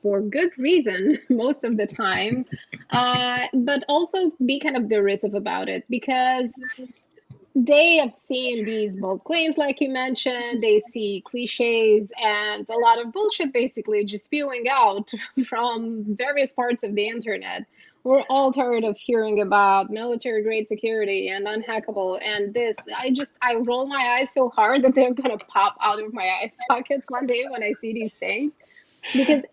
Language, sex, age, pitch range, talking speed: English, female, 20-39, 215-265 Hz, 165 wpm